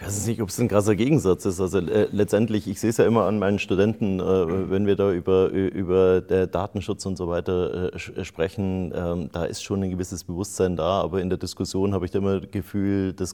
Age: 30-49